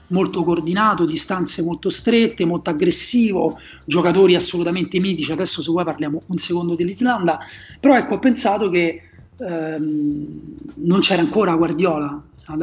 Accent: native